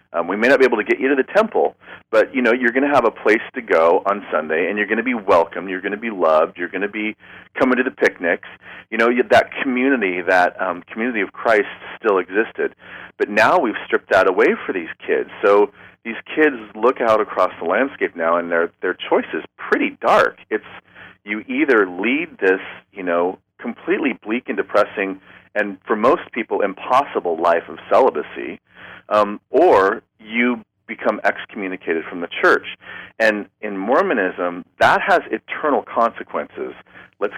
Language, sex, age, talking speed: English, male, 40-59, 185 wpm